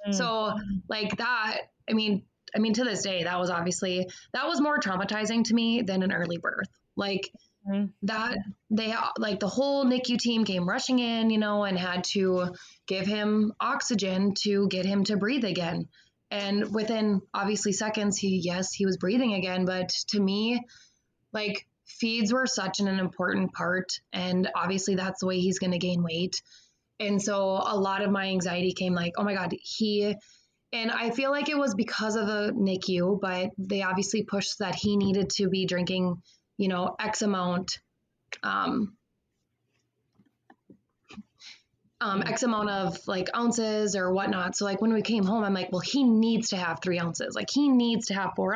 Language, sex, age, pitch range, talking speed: English, female, 20-39, 185-220 Hz, 180 wpm